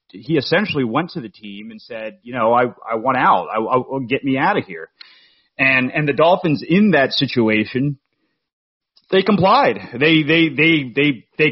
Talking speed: 175 wpm